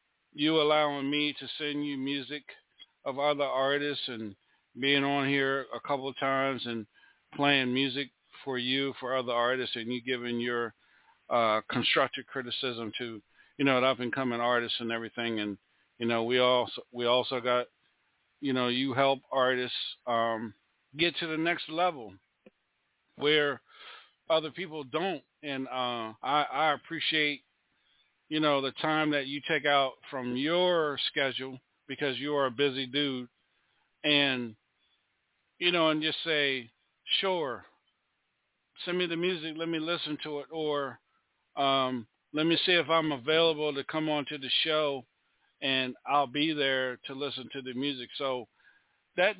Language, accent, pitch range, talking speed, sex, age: English, American, 125-150 Hz, 155 wpm, male, 50-69